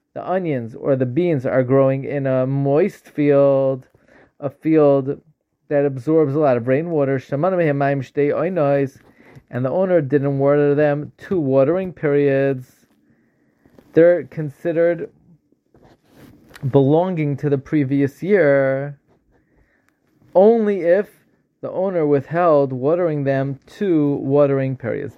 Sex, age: male, 20-39